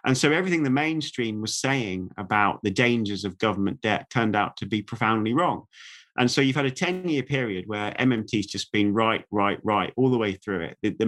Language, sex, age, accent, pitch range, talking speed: English, male, 30-49, British, 105-130 Hz, 220 wpm